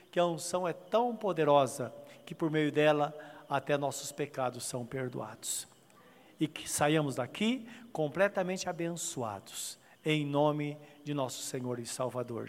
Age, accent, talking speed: 60-79, Brazilian, 135 wpm